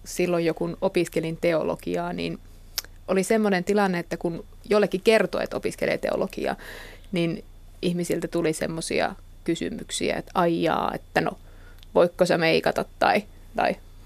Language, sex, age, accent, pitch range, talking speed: Finnish, female, 30-49, native, 165-195 Hz, 130 wpm